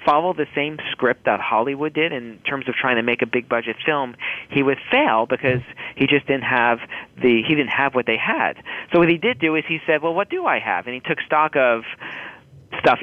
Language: English